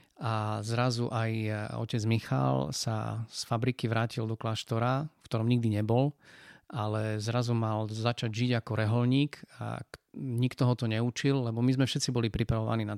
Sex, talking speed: male, 155 wpm